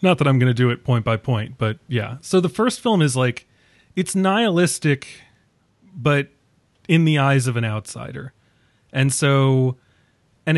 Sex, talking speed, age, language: male, 170 wpm, 30-49, English